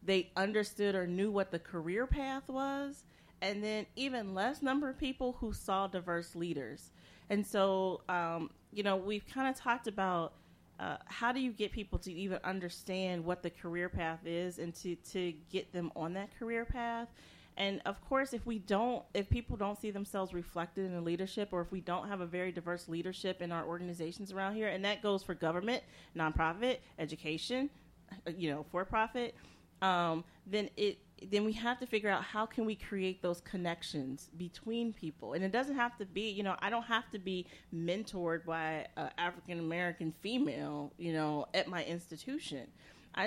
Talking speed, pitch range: 185 wpm, 170-215 Hz